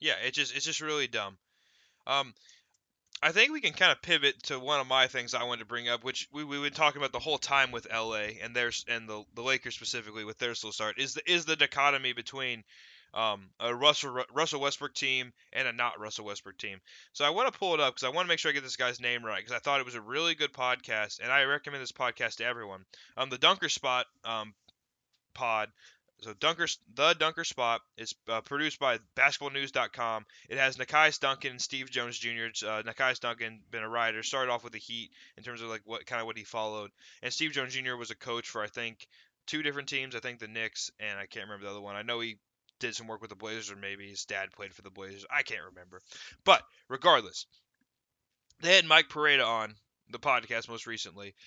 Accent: American